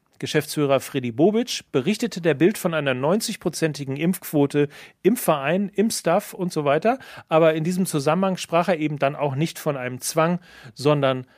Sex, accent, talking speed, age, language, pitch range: male, German, 165 wpm, 40-59, German, 145-185 Hz